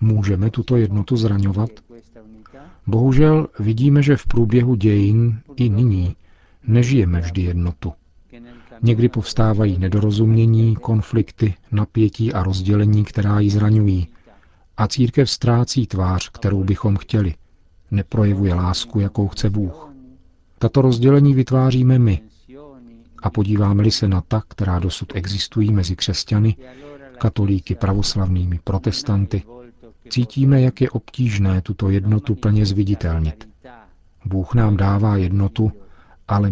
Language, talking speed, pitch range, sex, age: Czech, 110 wpm, 90-115 Hz, male, 40-59